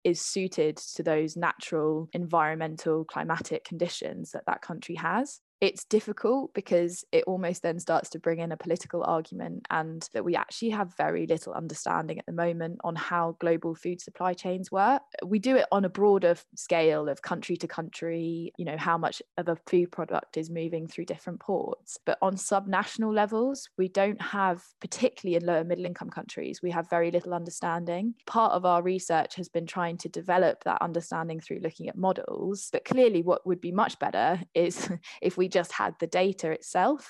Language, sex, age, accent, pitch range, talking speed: English, female, 20-39, British, 165-190 Hz, 185 wpm